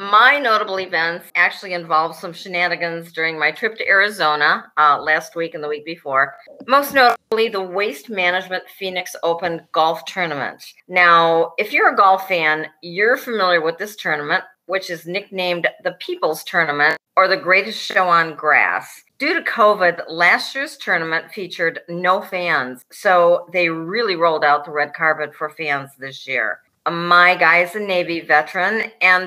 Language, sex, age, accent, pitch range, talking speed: English, female, 50-69, American, 165-200 Hz, 160 wpm